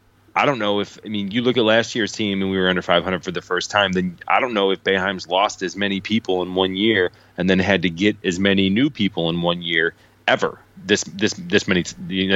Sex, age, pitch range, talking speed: male, 30-49, 90-110 Hz, 250 wpm